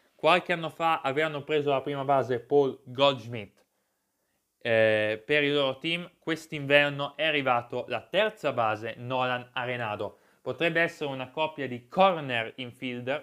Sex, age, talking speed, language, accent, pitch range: male, 20-39, 135 wpm, Italian, native, 120-160 Hz